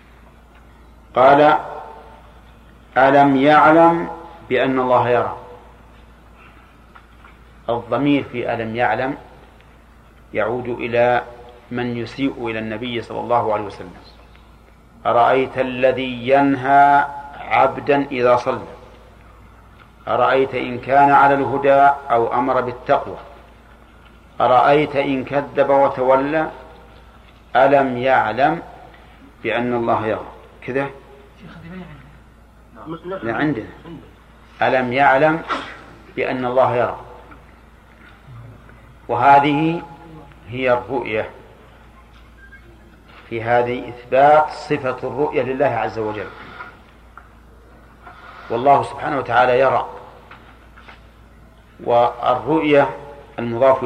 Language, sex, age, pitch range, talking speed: Arabic, male, 50-69, 120-140 Hz, 75 wpm